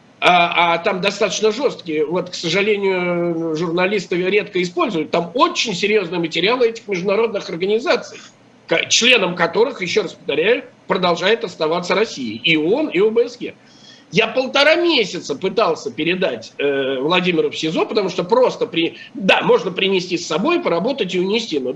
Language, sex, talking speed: Russian, male, 145 wpm